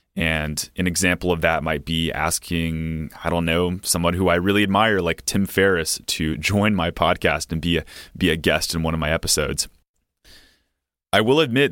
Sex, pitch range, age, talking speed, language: male, 80-95 Hz, 30-49, 190 wpm, English